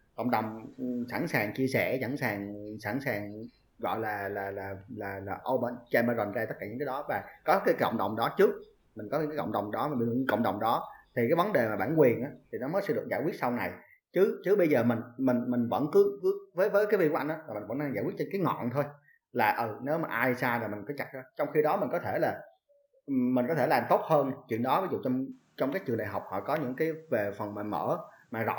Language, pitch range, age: Vietnamese, 120-155 Hz, 30-49